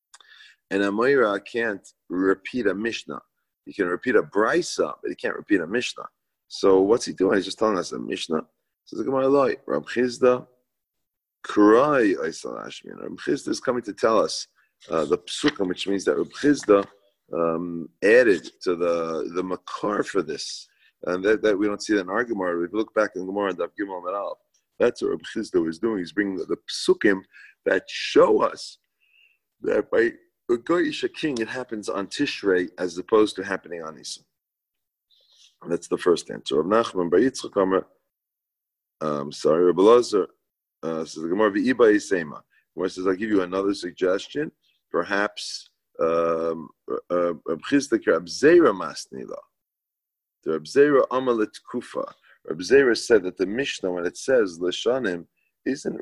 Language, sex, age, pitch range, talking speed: English, male, 30-49, 90-140 Hz, 140 wpm